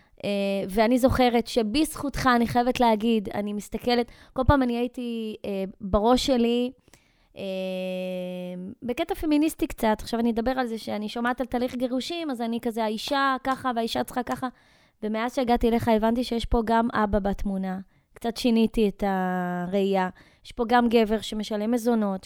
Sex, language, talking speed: female, Hebrew, 155 wpm